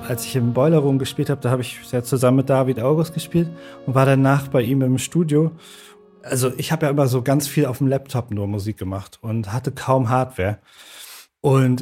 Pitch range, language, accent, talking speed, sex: 125-140 Hz, German, German, 210 wpm, male